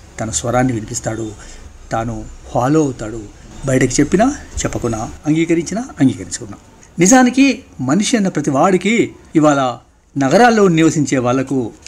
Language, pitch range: Telugu, 120-150 Hz